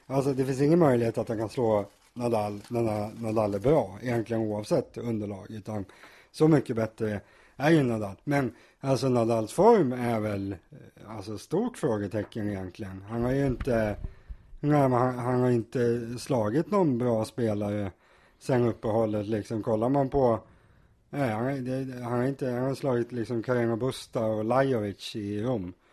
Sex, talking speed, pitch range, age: male, 160 wpm, 110-130 Hz, 30-49